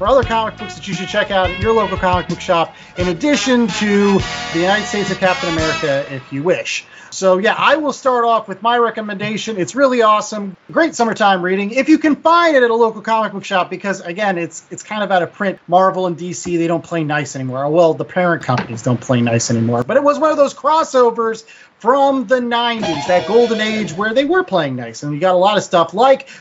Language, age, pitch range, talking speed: English, 30-49, 180-240 Hz, 235 wpm